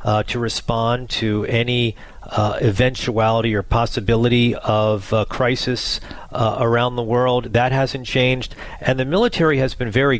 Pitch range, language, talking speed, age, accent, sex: 115-130 Hz, English, 145 wpm, 40-59, American, male